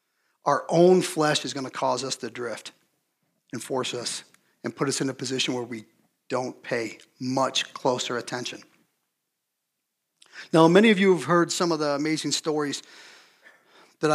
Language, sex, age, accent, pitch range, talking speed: English, male, 40-59, American, 130-160 Hz, 160 wpm